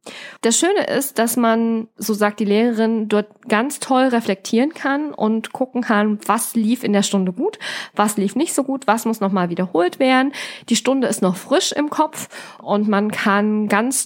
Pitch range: 195-245 Hz